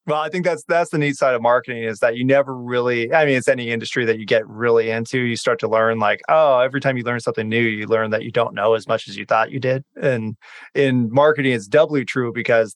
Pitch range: 115-140 Hz